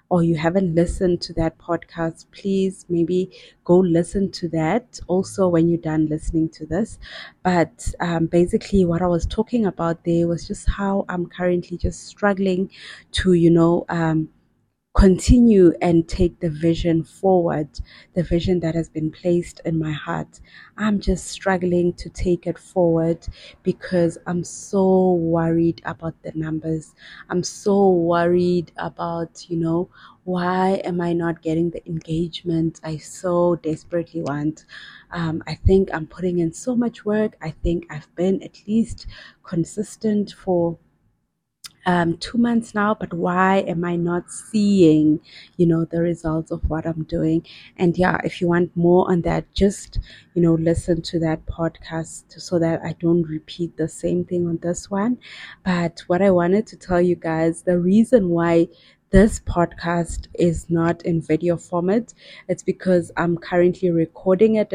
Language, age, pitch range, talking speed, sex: English, 30-49, 165-185 Hz, 160 wpm, female